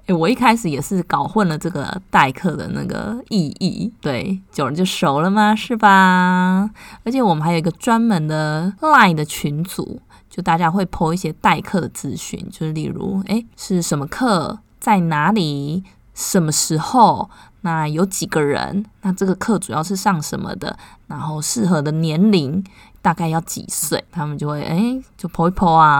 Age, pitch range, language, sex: 20-39, 160-205 Hz, Chinese, female